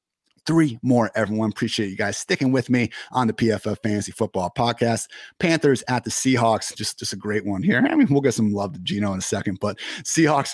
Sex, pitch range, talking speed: male, 110-140 Hz, 215 wpm